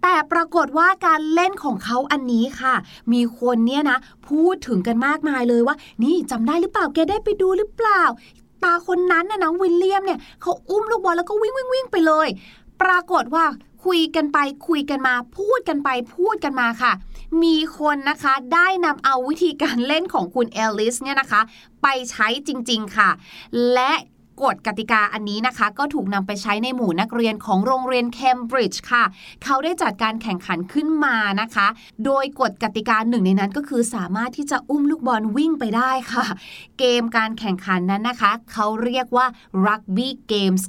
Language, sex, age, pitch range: Thai, female, 20-39, 220-310 Hz